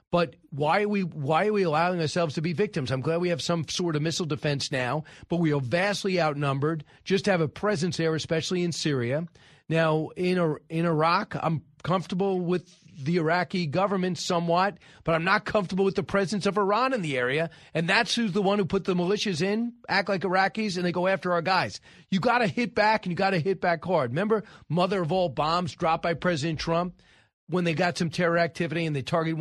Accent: American